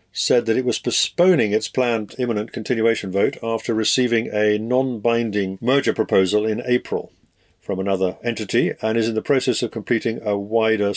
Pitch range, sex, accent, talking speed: 95-120 Hz, male, British, 165 wpm